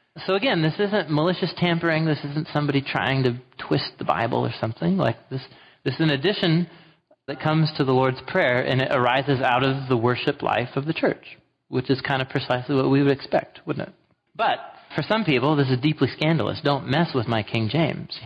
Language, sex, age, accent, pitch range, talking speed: English, male, 30-49, American, 125-160 Hz, 210 wpm